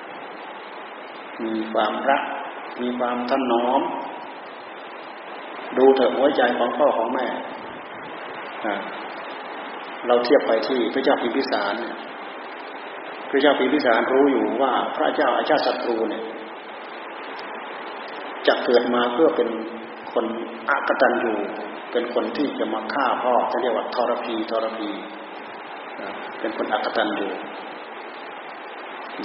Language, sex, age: Thai, male, 30-49